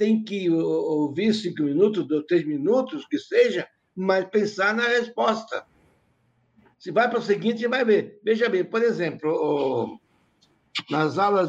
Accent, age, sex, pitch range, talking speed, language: Brazilian, 60-79, male, 145-205 Hz, 140 wpm, Portuguese